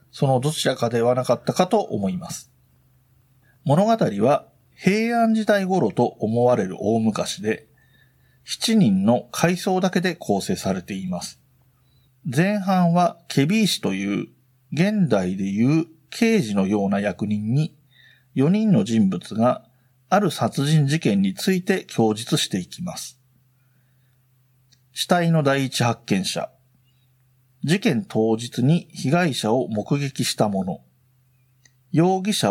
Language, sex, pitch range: Japanese, male, 125-180 Hz